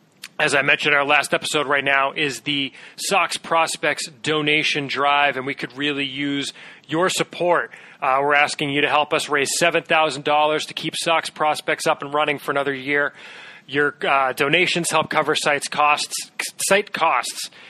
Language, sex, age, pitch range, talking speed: English, male, 30-49, 125-150 Hz, 175 wpm